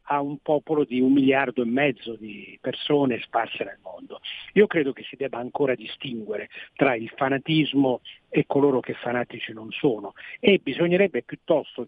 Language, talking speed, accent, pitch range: Italian, 160 wpm, native, 125-160 Hz